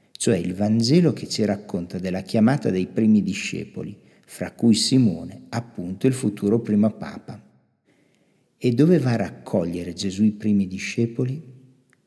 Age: 50-69